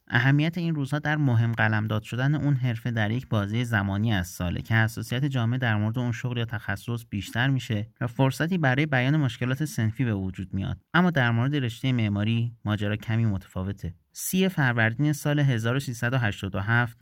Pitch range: 110-135 Hz